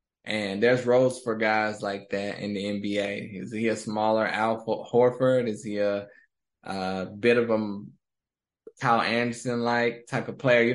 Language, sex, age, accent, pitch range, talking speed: English, male, 20-39, American, 110-130 Hz, 160 wpm